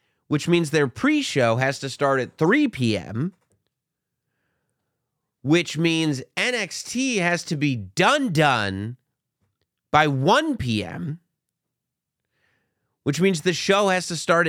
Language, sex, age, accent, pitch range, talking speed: English, male, 30-49, American, 115-160 Hz, 110 wpm